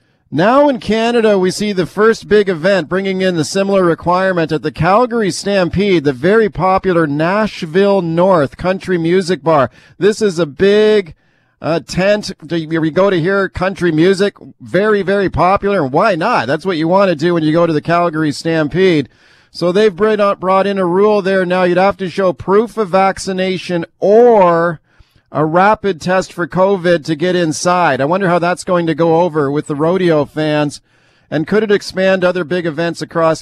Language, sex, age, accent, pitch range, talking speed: English, male, 40-59, American, 160-190 Hz, 180 wpm